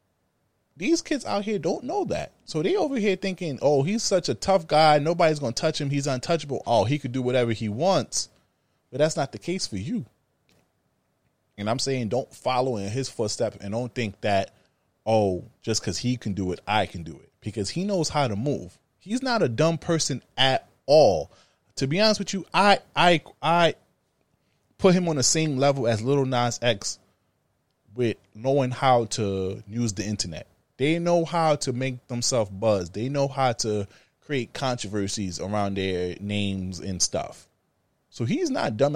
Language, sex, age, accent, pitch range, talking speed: English, male, 20-39, American, 105-145 Hz, 190 wpm